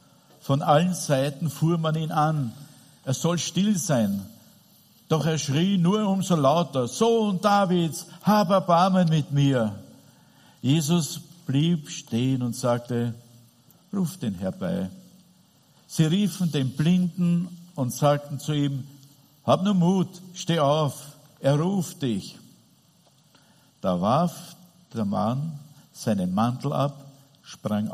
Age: 50-69